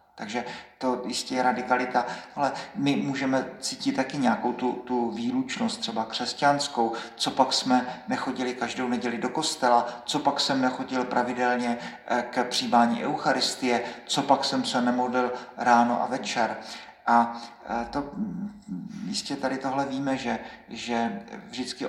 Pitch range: 120-140 Hz